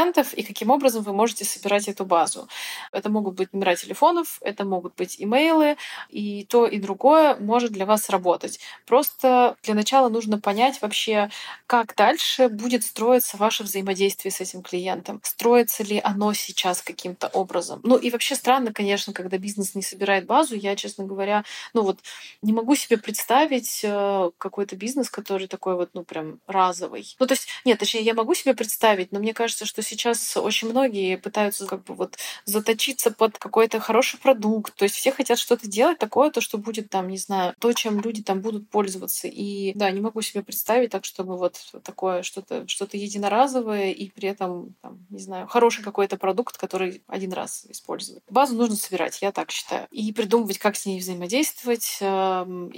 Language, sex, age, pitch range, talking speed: Russian, female, 20-39, 195-235 Hz, 175 wpm